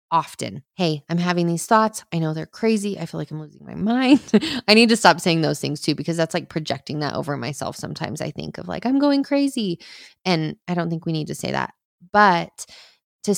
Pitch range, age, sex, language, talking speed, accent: 165-200 Hz, 20-39, female, English, 230 wpm, American